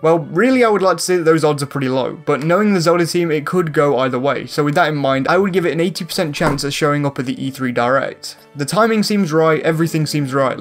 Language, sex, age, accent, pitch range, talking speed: English, male, 20-39, British, 140-180 Hz, 275 wpm